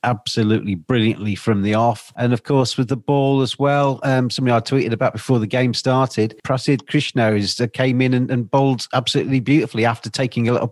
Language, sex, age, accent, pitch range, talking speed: English, male, 40-59, British, 105-130 Hz, 205 wpm